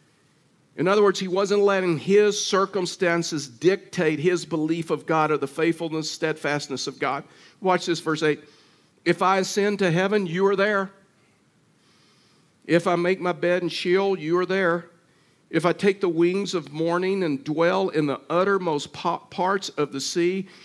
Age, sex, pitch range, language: 50-69, male, 155-185 Hz, English